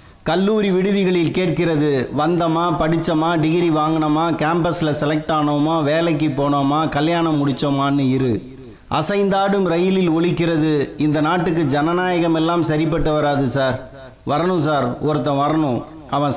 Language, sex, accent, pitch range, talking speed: Tamil, male, native, 130-165 Hz, 110 wpm